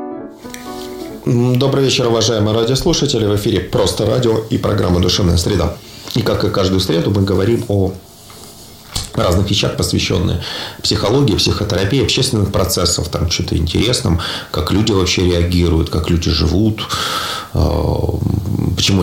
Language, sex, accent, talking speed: Russian, male, native, 120 wpm